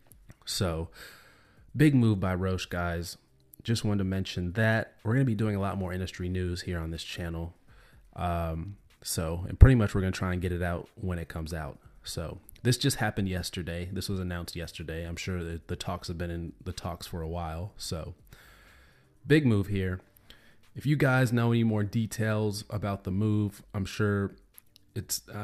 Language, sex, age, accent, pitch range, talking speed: English, male, 30-49, American, 90-110 Hz, 195 wpm